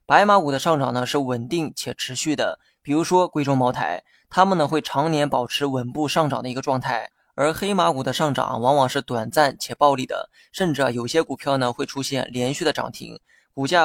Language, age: Chinese, 20-39